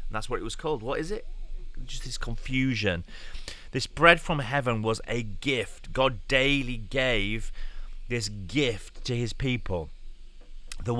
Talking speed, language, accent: 145 wpm, English, British